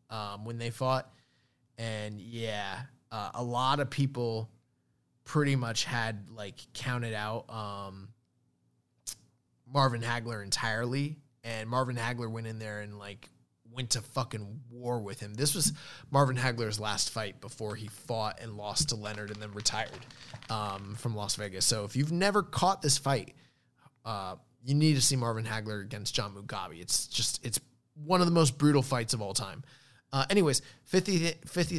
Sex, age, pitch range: male, 20-39, 110-140 Hz